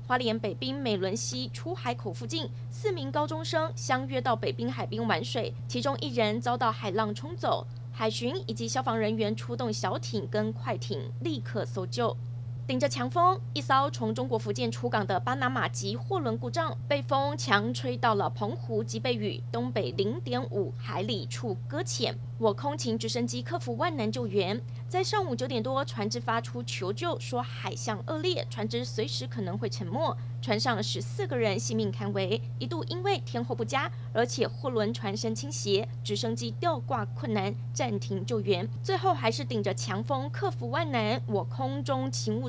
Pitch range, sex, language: 115-125 Hz, female, Chinese